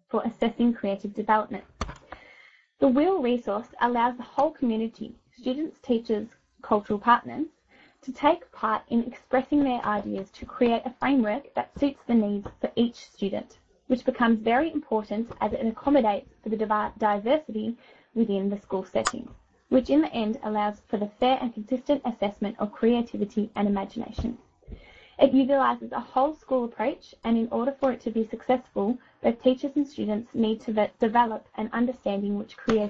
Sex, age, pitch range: female, 10-29, 215-260 Hz